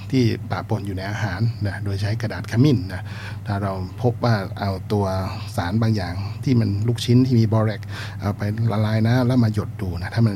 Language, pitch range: Thai, 100-115 Hz